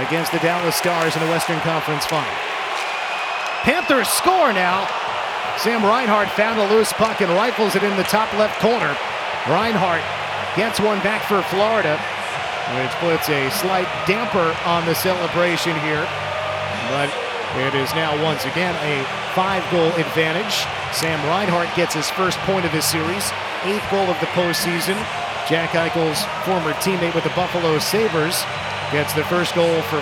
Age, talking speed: 40-59, 155 wpm